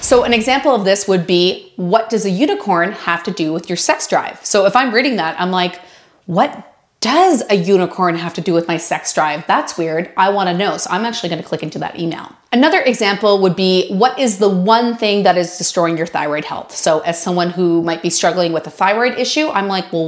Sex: female